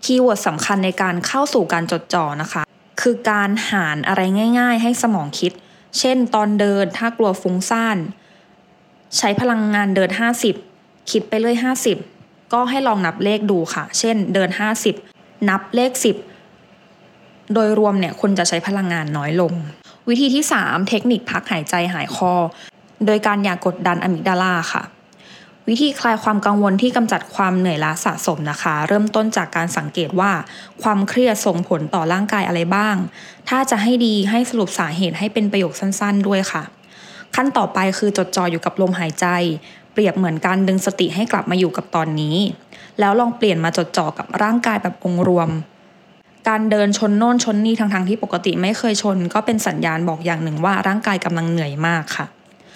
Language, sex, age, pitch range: English, female, 20-39, 180-215 Hz